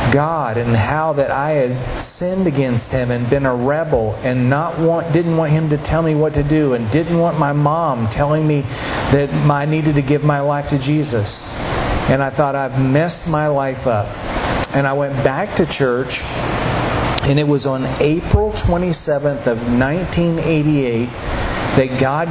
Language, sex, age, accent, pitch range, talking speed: English, male, 40-59, American, 130-165 Hz, 175 wpm